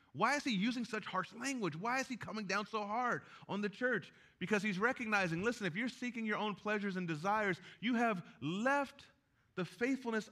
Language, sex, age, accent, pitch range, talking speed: English, male, 30-49, American, 155-220 Hz, 200 wpm